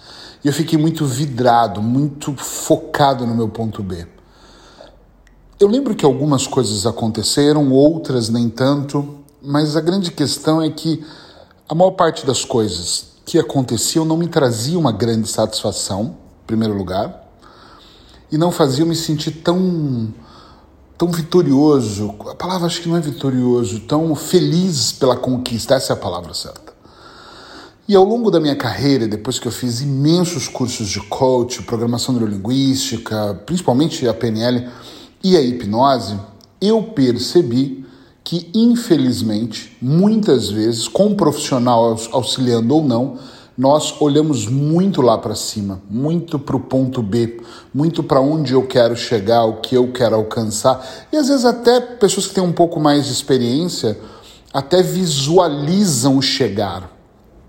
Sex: male